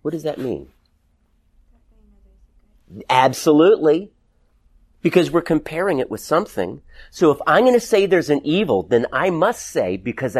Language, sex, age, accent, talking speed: English, male, 40-59, American, 145 wpm